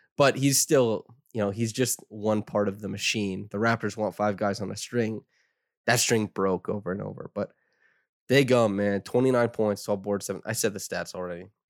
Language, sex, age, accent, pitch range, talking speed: English, male, 20-39, American, 100-120 Hz, 205 wpm